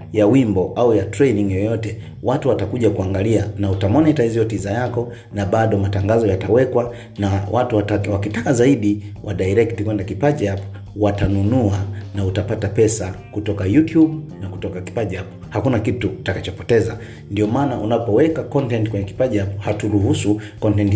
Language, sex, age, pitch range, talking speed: Swahili, male, 40-59, 100-115 Hz, 135 wpm